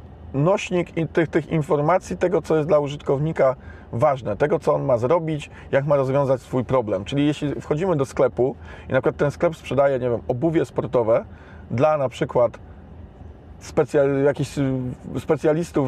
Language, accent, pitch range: Polish, native, 115-150 Hz